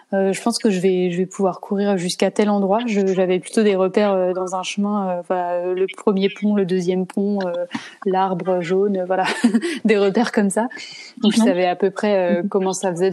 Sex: female